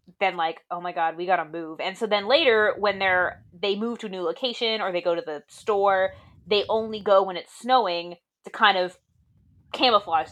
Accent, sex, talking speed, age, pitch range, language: American, female, 210 wpm, 20-39, 180-235 Hz, English